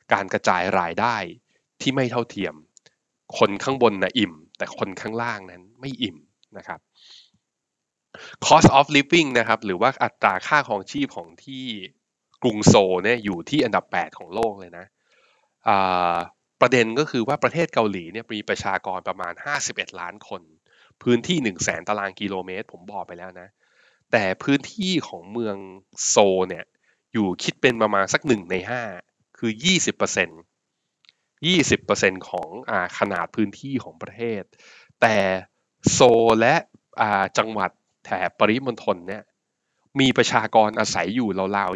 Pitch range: 95-125 Hz